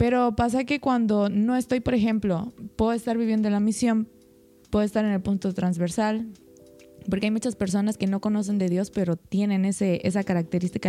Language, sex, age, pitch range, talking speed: Spanish, female, 20-39, 195-235 Hz, 180 wpm